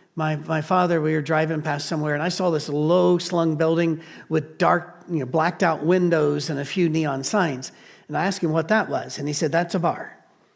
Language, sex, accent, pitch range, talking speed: English, male, American, 150-190 Hz, 215 wpm